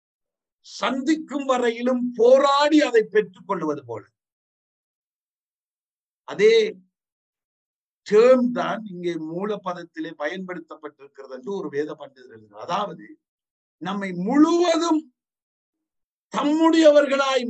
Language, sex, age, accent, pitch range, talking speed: Tamil, male, 50-69, native, 170-275 Hz, 50 wpm